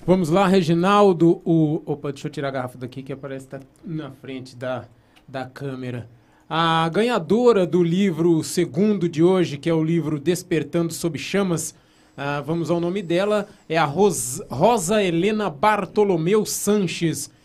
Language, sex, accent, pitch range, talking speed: Portuguese, male, Brazilian, 150-185 Hz, 145 wpm